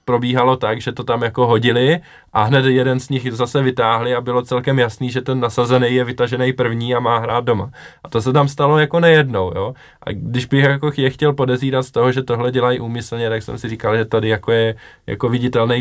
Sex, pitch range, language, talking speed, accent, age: male, 100-125 Hz, Czech, 225 wpm, native, 20-39